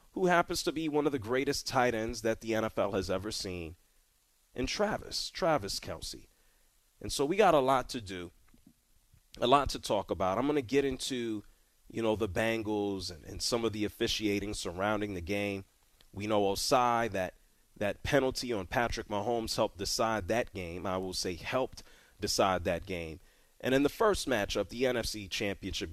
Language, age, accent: English, 30-49, American